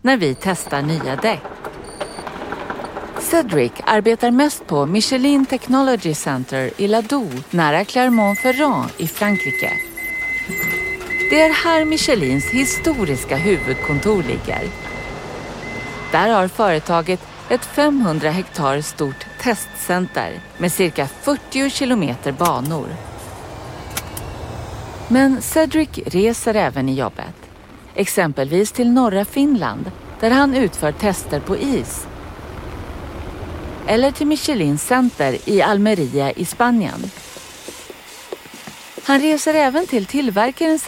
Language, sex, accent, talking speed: Swedish, female, native, 100 wpm